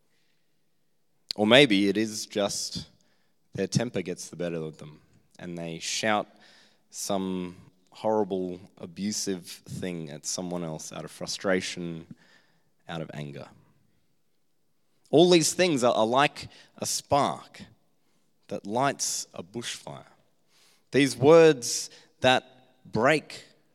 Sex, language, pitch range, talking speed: male, English, 95-125 Hz, 110 wpm